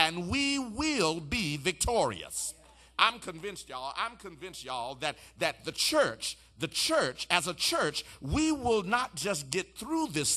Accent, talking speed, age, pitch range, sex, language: American, 150 wpm, 50-69, 170-230 Hz, male, English